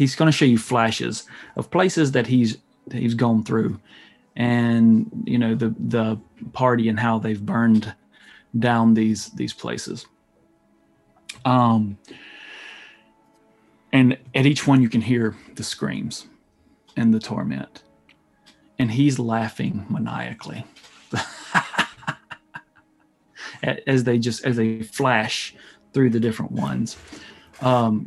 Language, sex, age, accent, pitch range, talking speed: English, male, 30-49, American, 110-130 Hz, 120 wpm